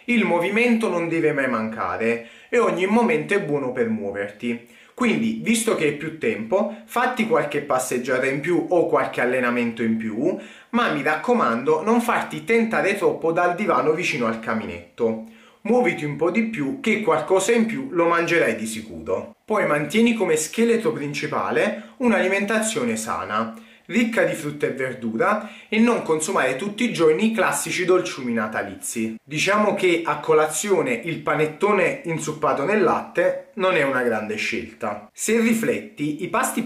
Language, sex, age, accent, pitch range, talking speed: Italian, male, 30-49, native, 145-225 Hz, 155 wpm